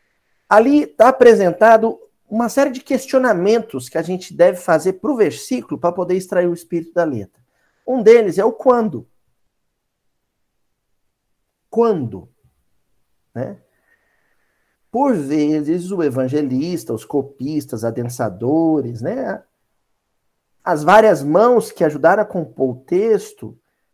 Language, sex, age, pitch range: Portuguese, male, 50-69, 145-235 Hz